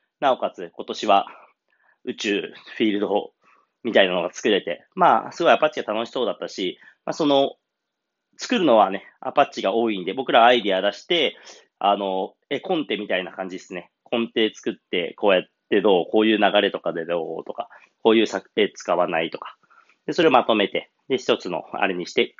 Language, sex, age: Japanese, male, 30-49